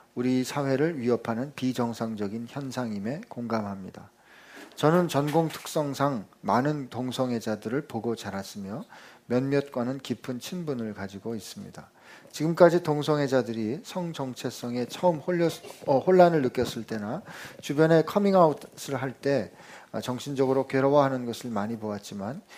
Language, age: Korean, 40-59